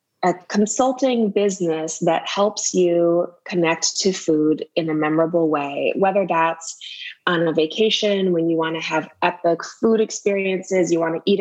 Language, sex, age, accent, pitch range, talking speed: English, female, 20-39, American, 160-195 Hz, 160 wpm